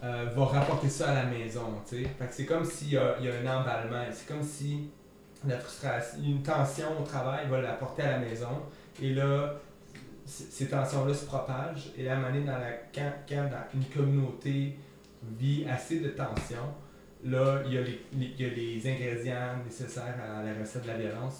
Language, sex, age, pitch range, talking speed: French, male, 30-49, 120-140 Hz, 175 wpm